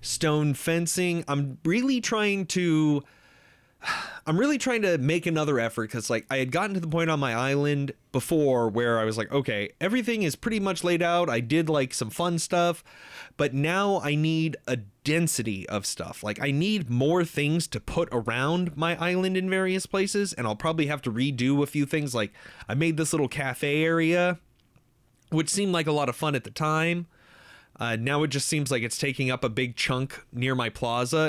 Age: 30-49